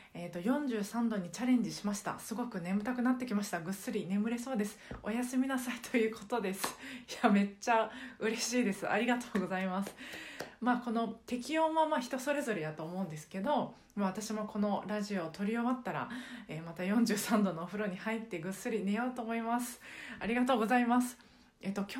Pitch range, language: 185-245 Hz, Japanese